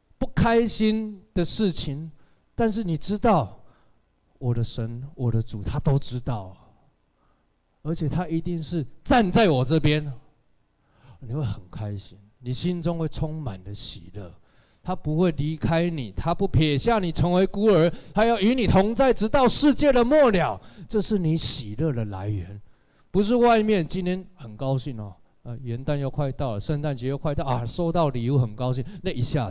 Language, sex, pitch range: Chinese, male, 120-185 Hz